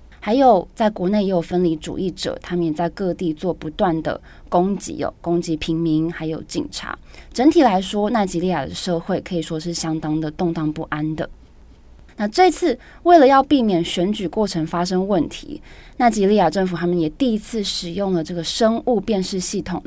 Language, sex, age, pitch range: Chinese, female, 20-39, 165-210 Hz